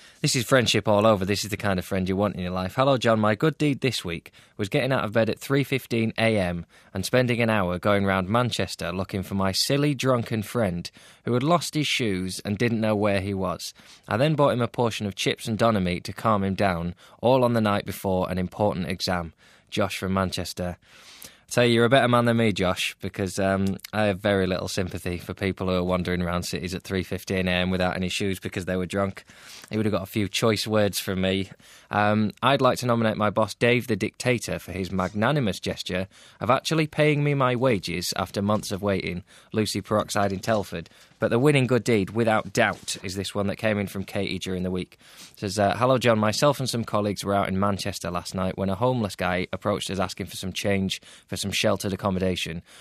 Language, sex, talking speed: English, male, 225 wpm